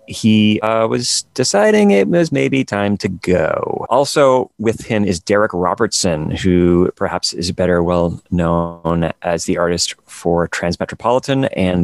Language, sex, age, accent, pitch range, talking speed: English, male, 30-49, American, 90-110 Hz, 140 wpm